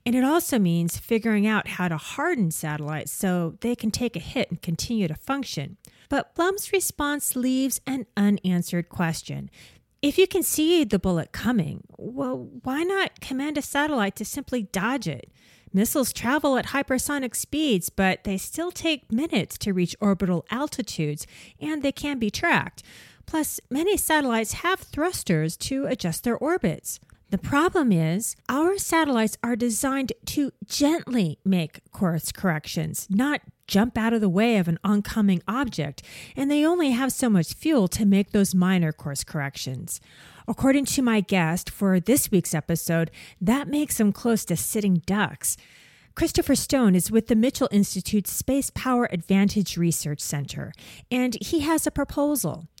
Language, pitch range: English, 180-275 Hz